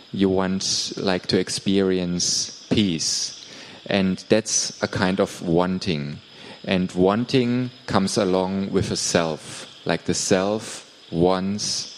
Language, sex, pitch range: Thai, male, 95-115 Hz